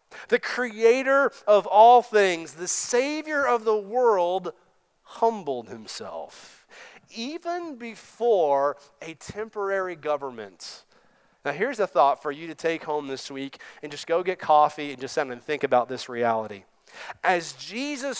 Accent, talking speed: American, 140 wpm